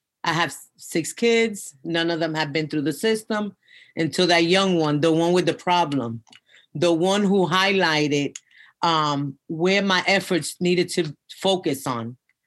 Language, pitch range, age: English, 165-205 Hz, 40-59